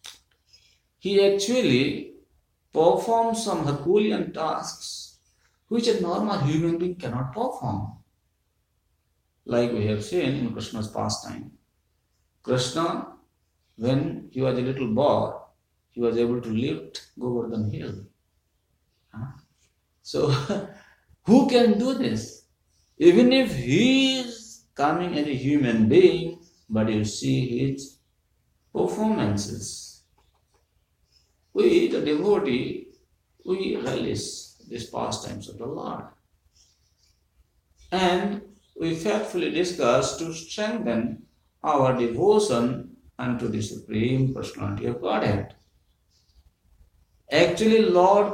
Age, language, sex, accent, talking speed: 60-79, English, male, Indian, 100 wpm